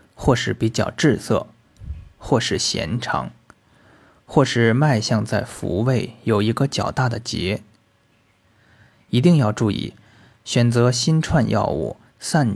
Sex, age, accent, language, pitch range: male, 20-39, native, Chinese, 110-135 Hz